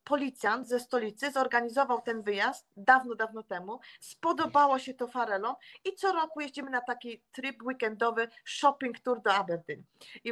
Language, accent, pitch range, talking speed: Polish, native, 220-260 Hz, 150 wpm